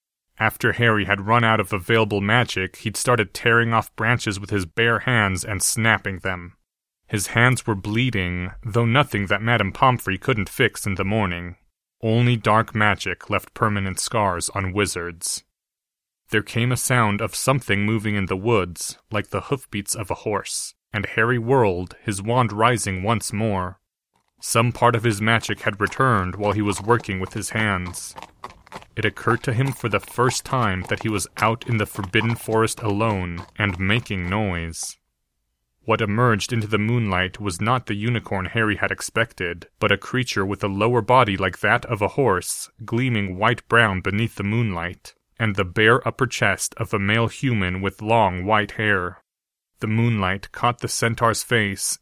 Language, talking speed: English, 170 wpm